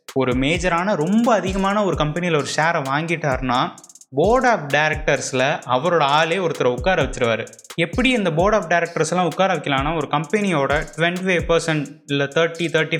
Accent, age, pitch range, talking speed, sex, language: native, 20-39, 135-180 Hz, 125 wpm, male, Tamil